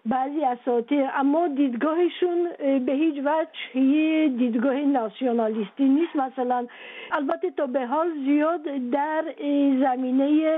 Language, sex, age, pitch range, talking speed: Persian, female, 50-69, 245-305 Hz, 95 wpm